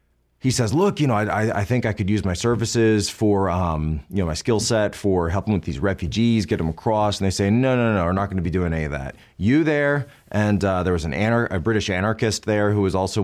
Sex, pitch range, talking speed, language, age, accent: male, 95-125 Hz, 265 wpm, English, 30-49, American